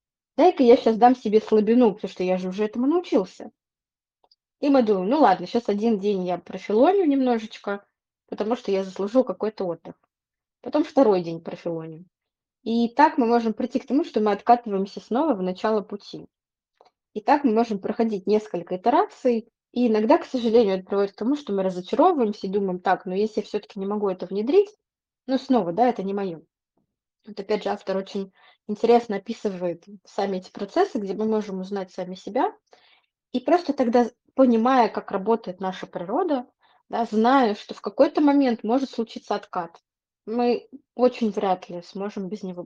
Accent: native